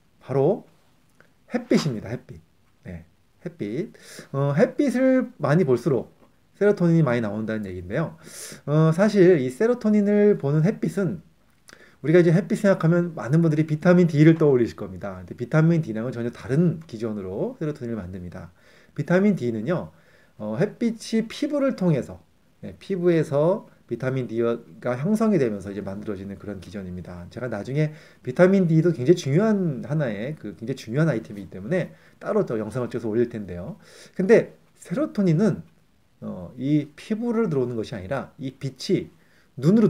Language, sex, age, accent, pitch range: Korean, male, 30-49, native, 110-180 Hz